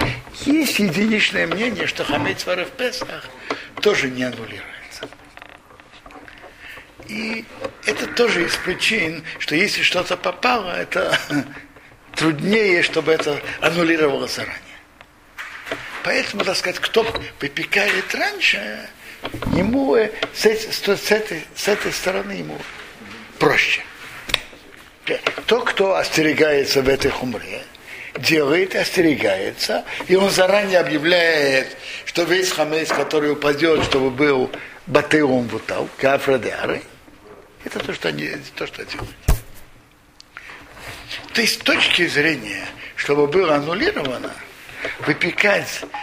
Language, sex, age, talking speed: Russian, male, 60-79, 100 wpm